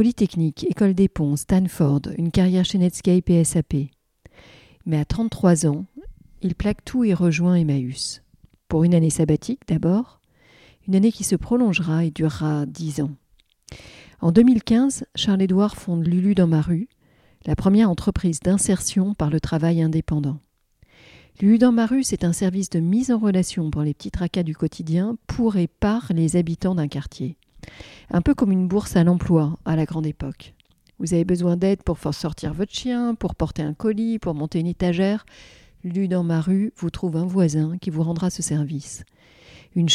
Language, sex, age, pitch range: French, female, 40-59, 160-195 Hz